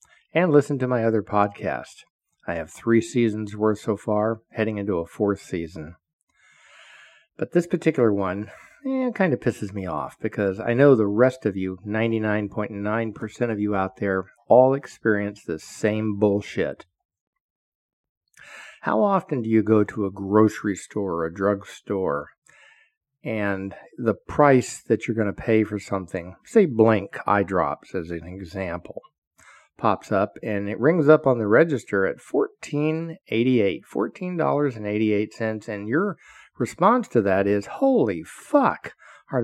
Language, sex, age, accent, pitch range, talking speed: English, male, 50-69, American, 100-135 Hz, 155 wpm